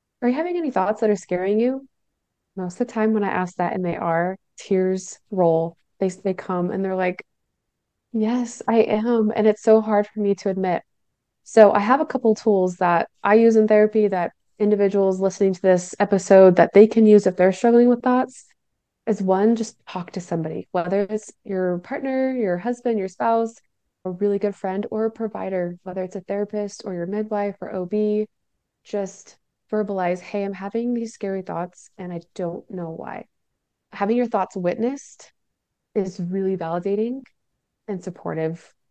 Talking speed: 180 wpm